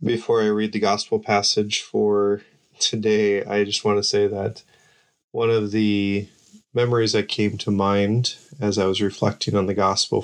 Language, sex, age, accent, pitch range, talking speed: English, male, 20-39, American, 100-120 Hz, 170 wpm